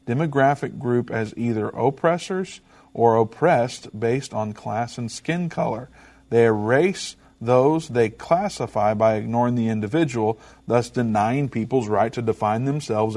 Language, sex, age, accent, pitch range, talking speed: English, male, 50-69, American, 110-130 Hz, 130 wpm